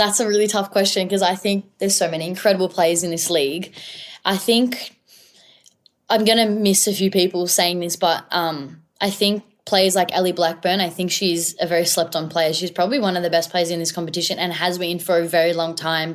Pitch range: 165-195 Hz